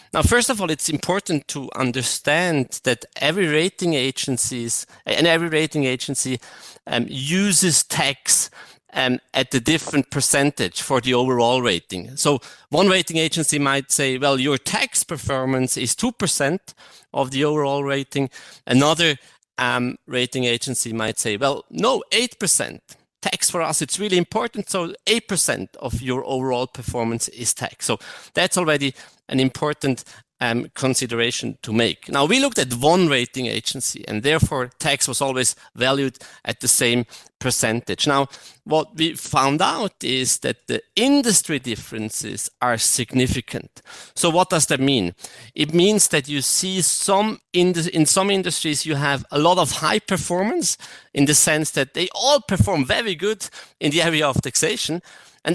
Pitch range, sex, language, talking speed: 130-170 Hz, male, German, 155 wpm